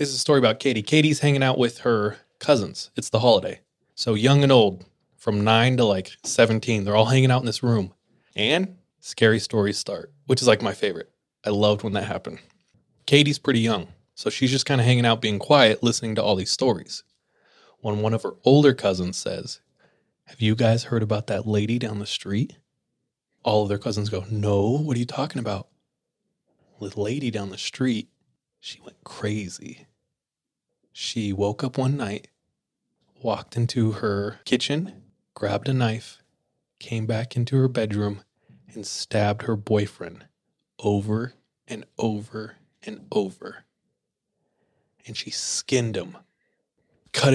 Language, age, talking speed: English, 20-39, 165 wpm